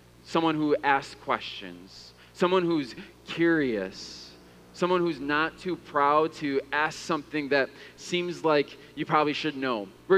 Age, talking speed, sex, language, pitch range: 20-39, 135 wpm, male, English, 145-225 Hz